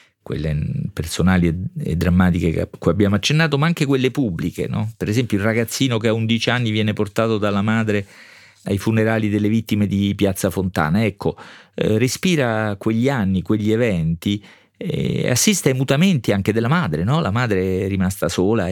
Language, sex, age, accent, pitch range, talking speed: Italian, male, 40-59, native, 90-115 Hz, 165 wpm